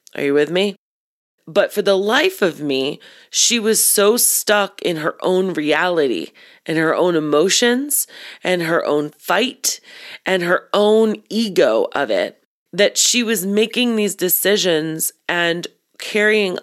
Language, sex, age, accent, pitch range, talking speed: English, female, 30-49, American, 160-205 Hz, 145 wpm